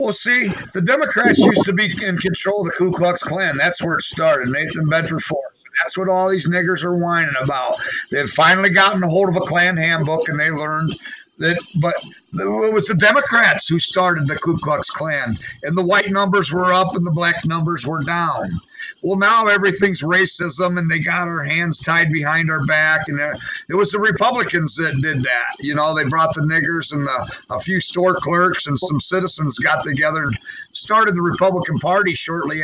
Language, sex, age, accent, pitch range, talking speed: English, male, 50-69, American, 155-190 Hz, 200 wpm